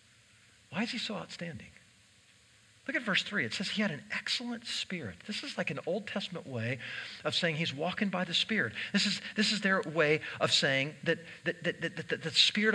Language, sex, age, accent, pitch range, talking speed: English, male, 50-69, American, 115-190 Hz, 215 wpm